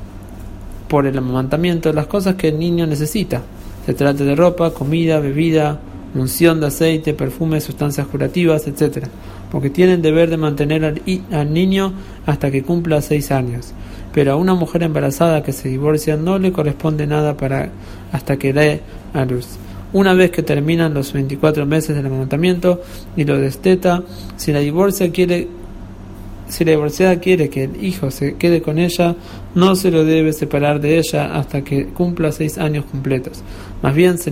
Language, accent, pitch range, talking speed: English, Argentinian, 140-170 Hz, 170 wpm